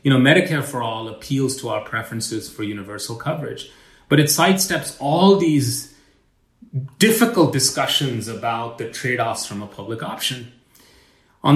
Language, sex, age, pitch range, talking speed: English, male, 30-49, 115-150 Hz, 145 wpm